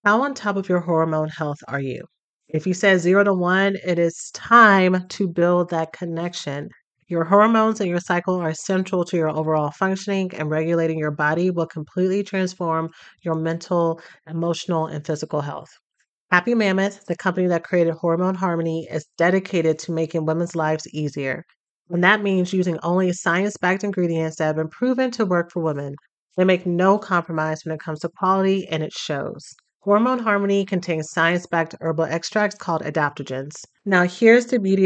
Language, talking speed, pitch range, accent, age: English, 170 wpm, 160-195 Hz, American, 30-49